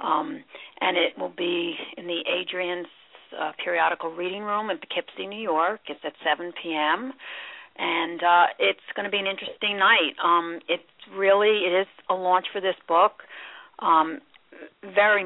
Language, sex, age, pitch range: English, female, 50-69, 170-200 Hz